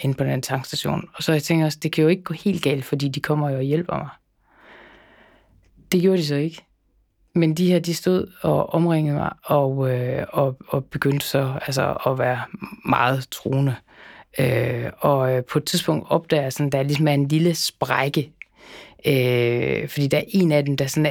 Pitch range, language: 130-155 Hz, Danish